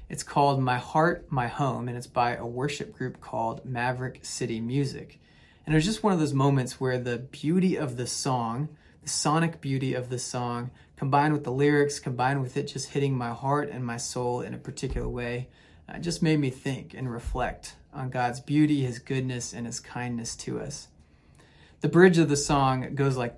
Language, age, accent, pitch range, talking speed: English, 30-49, American, 125-150 Hz, 200 wpm